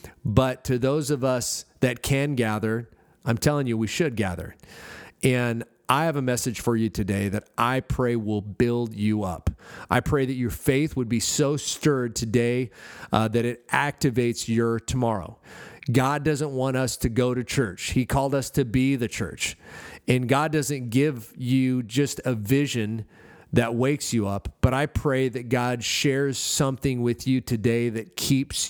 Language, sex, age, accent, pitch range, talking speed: English, male, 40-59, American, 105-130 Hz, 175 wpm